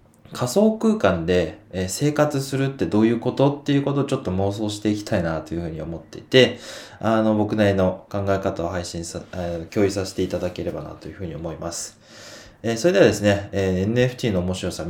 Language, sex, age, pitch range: Japanese, male, 20-39, 95-140 Hz